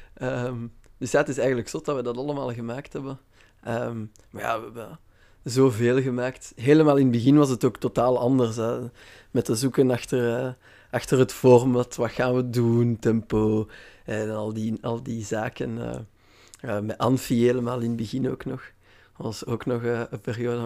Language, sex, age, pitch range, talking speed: Dutch, male, 20-39, 115-130 Hz, 190 wpm